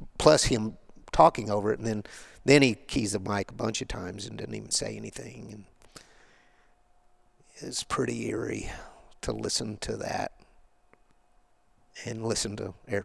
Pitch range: 105-120 Hz